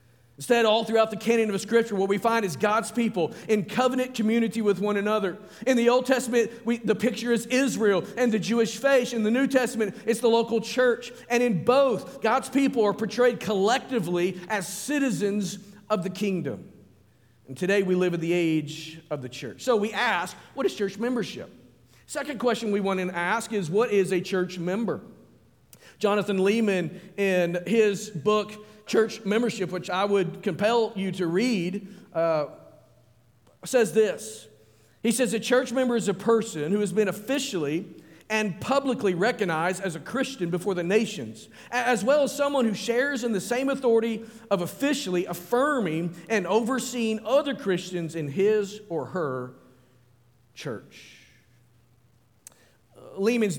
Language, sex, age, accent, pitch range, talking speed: English, male, 50-69, American, 165-225 Hz, 160 wpm